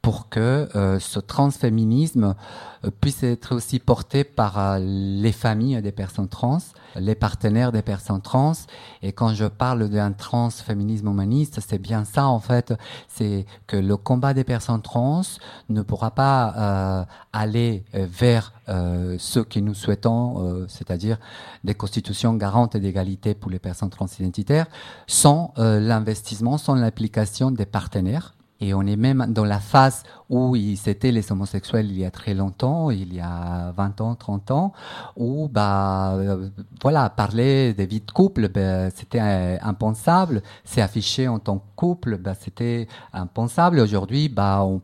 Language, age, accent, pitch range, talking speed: French, 50-69, French, 100-125 Hz, 150 wpm